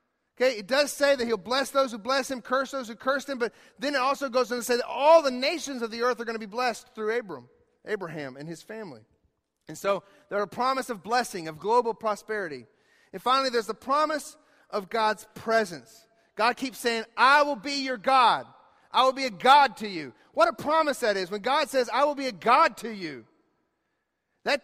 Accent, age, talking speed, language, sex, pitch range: American, 40-59, 215 wpm, English, male, 215-285 Hz